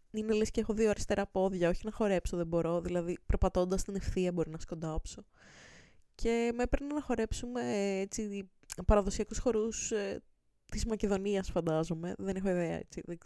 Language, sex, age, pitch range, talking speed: Greek, female, 20-39, 180-230 Hz, 160 wpm